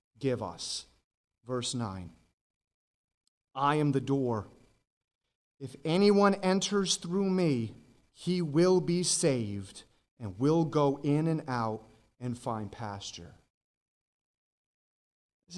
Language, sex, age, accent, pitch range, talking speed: English, male, 30-49, American, 115-160 Hz, 105 wpm